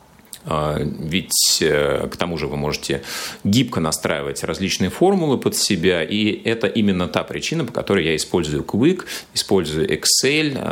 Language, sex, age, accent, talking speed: Russian, male, 30-49, native, 135 wpm